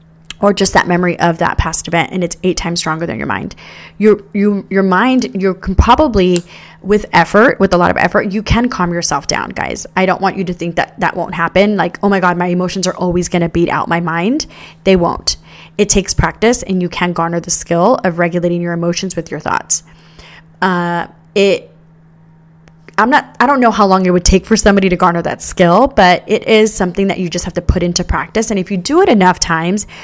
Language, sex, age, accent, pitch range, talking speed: English, female, 20-39, American, 170-195 Hz, 230 wpm